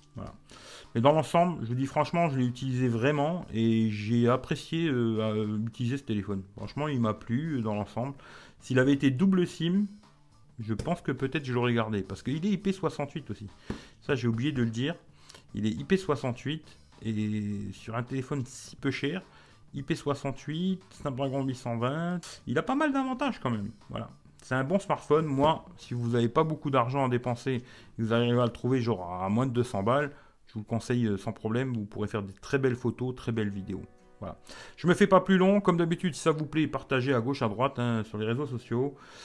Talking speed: 200 wpm